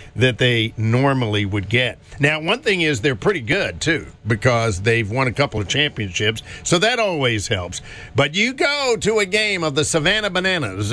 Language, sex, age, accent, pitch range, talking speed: English, male, 50-69, American, 115-165 Hz, 185 wpm